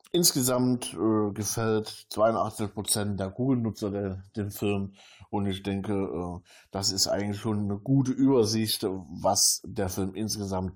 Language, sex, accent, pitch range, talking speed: German, male, German, 100-120 Hz, 130 wpm